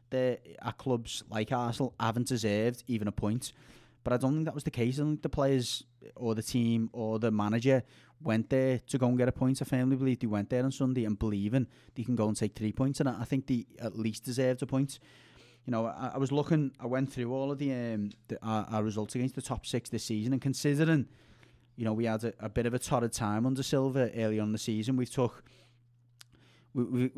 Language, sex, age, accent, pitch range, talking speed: English, male, 30-49, British, 110-130 Hz, 240 wpm